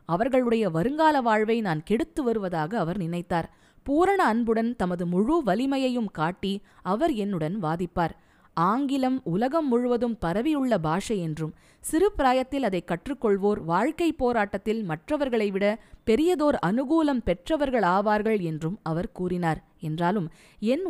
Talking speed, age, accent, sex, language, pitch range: 110 wpm, 20-39, native, female, Tamil, 175-250 Hz